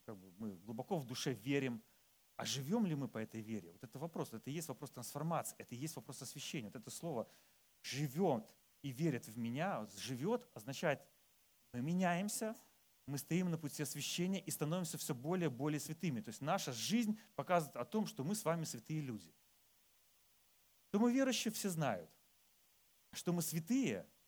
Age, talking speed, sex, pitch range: 30-49, 175 wpm, male, 125-175 Hz